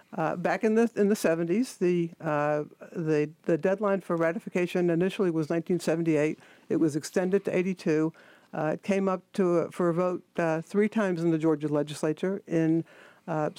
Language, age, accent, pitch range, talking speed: English, 60-79, American, 165-195 Hz, 175 wpm